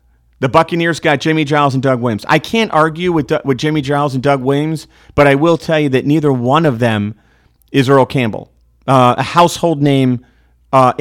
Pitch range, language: 135-175 Hz, English